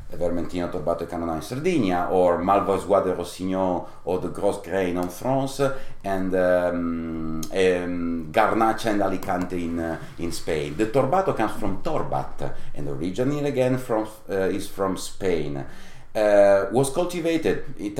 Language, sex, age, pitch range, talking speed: English, male, 40-59, 90-115 Hz, 140 wpm